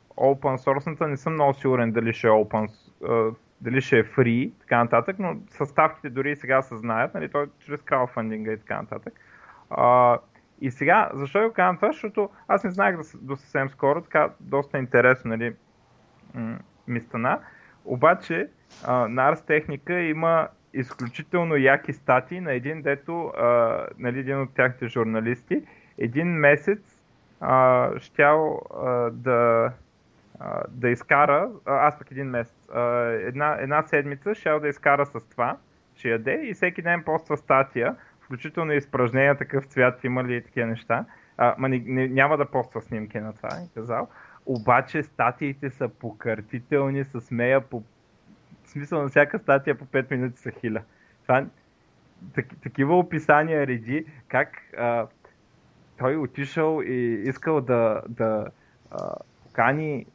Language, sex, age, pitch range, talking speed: Bulgarian, male, 20-39, 120-150 Hz, 145 wpm